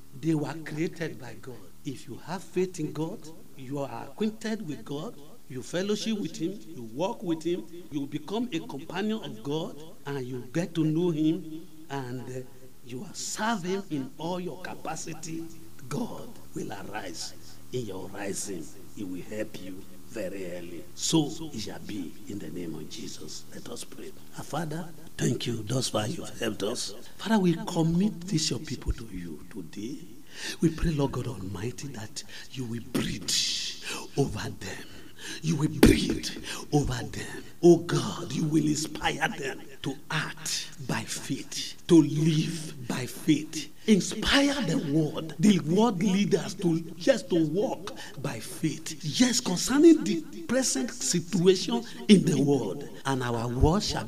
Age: 50-69